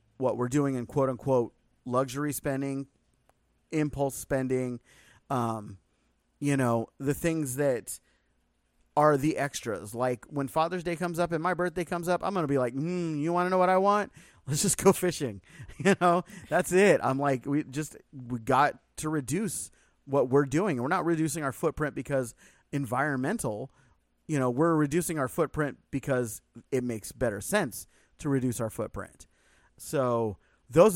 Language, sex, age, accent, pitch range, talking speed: English, male, 30-49, American, 115-160 Hz, 165 wpm